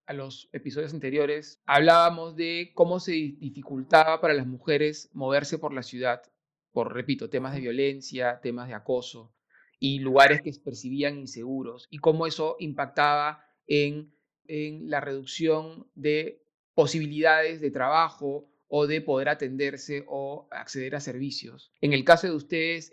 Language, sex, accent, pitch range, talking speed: Spanish, male, Argentinian, 140-160 Hz, 140 wpm